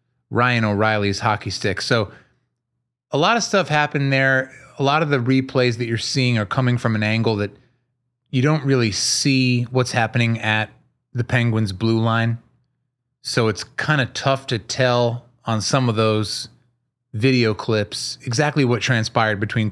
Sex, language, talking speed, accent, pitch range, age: male, English, 160 wpm, American, 110-130 Hz, 30-49